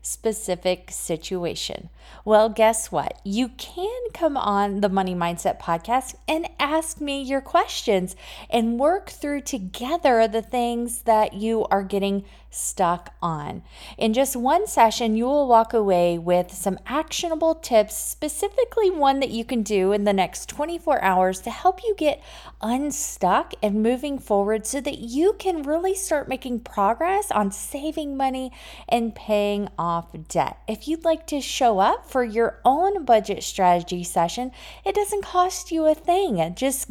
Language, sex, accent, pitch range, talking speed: English, female, American, 195-300 Hz, 155 wpm